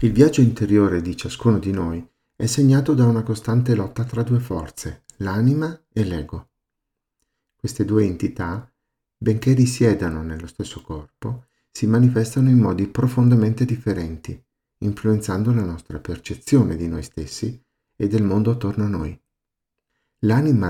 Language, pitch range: Italian, 95-120 Hz